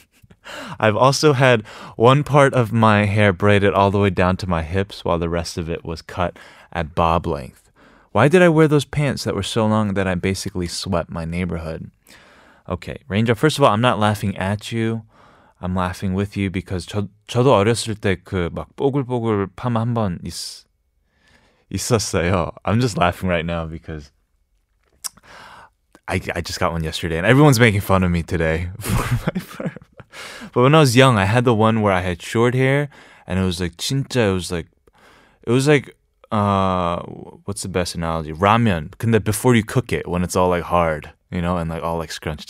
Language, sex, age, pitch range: Korean, male, 20-39, 85-120 Hz